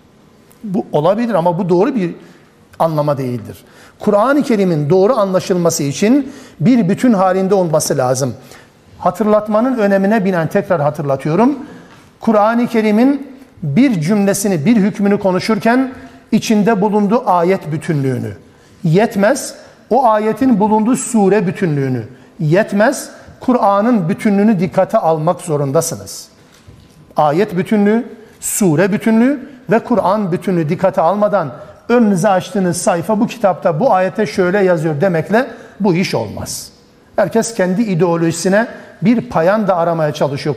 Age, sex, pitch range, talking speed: 60-79, male, 170-230 Hz, 110 wpm